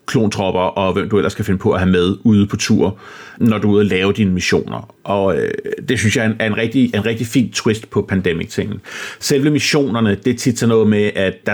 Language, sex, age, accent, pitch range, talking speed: Danish, male, 30-49, native, 95-115 Hz, 245 wpm